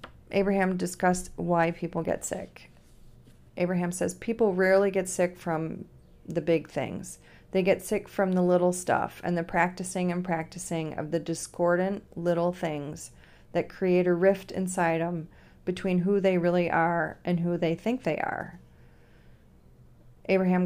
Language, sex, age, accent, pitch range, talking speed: English, female, 40-59, American, 170-195 Hz, 150 wpm